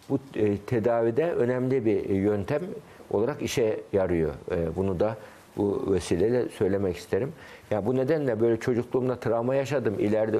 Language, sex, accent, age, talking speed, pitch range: Turkish, male, native, 60-79, 135 wpm, 105-130 Hz